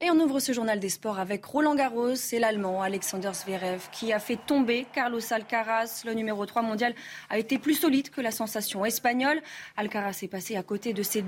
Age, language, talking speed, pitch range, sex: 20-39, French, 210 wpm, 210-275 Hz, female